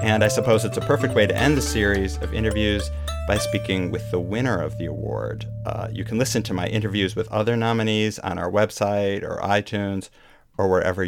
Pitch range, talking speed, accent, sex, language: 95-115 Hz, 205 wpm, American, male, English